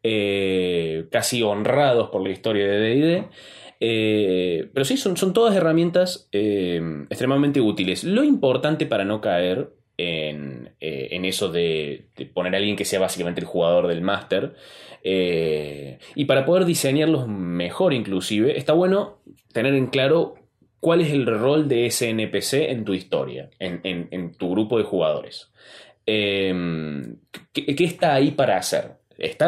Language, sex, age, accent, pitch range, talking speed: Spanish, male, 20-39, Argentinian, 95-145 Hz, 155 wpm